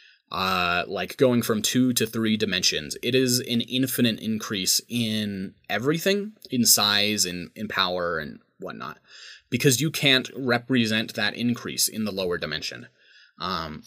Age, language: 20-39, English